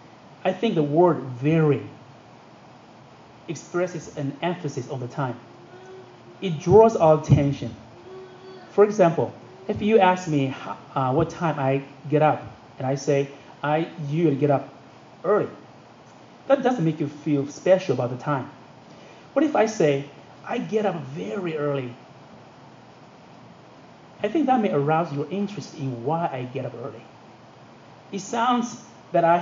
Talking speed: 145 wpm